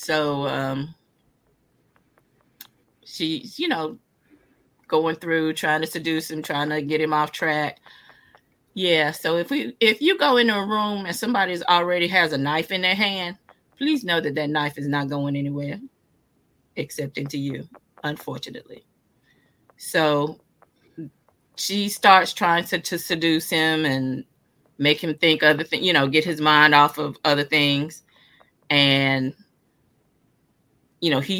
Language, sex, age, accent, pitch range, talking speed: English, female, 30-49, American, 145-170 Hz, 145 wpm